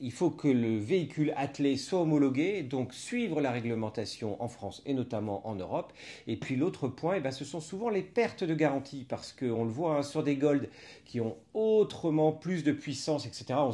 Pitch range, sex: 115-155 Hz, male